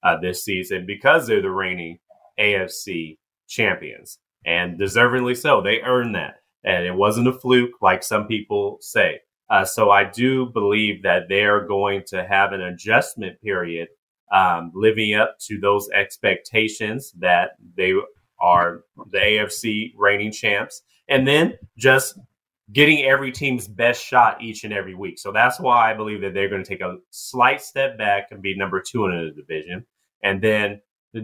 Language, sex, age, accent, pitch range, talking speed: English, male, 30-49, American, 95-125 Hz, 165 wpm